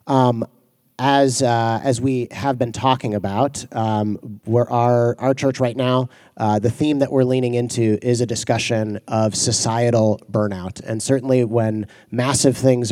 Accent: American